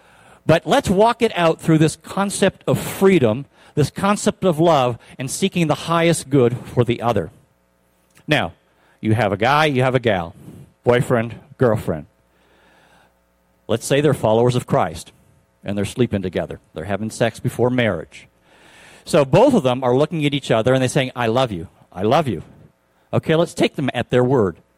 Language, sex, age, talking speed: English, male, 50-69, 175 wpm